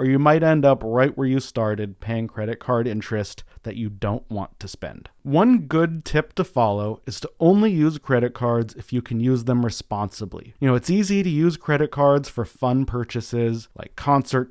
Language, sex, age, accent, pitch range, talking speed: English, male, 30-49, American, 115-145 Hz, 205 wpm